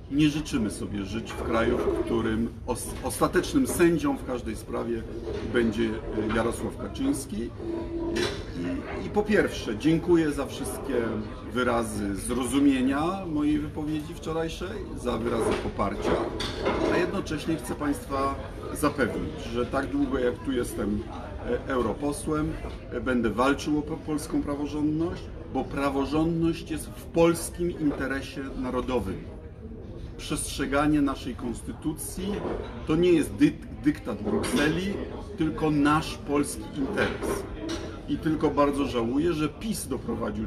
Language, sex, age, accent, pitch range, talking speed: Polish, male, 50-69, native, 110-150 Hz, 110 wpm